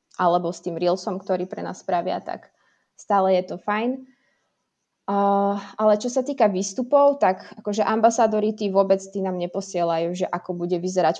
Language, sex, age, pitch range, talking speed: Slovak, female, 20-39, 180-205 Hz, 165 wpm